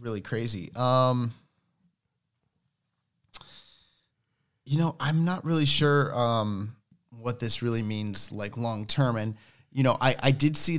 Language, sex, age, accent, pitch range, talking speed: English, male, 30-49, American, 100-130 Hz, 135 wpm